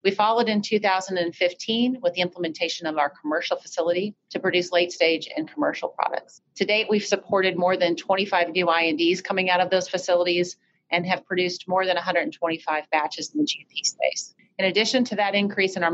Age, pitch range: 30-49, 170-195 Hz